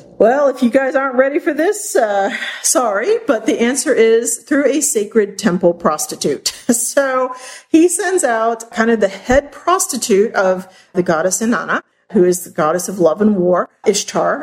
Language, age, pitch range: English, 40-59, 180-235 Hz